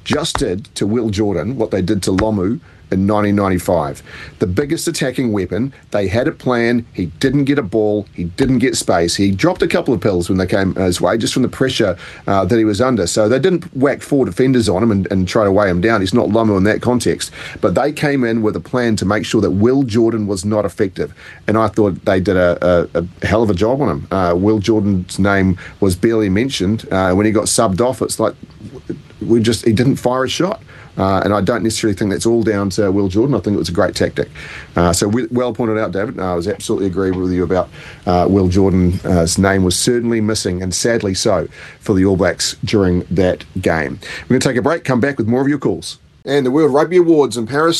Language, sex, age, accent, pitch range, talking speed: English, male, 40-59, Australian, 95-120 Hz, 240 wpm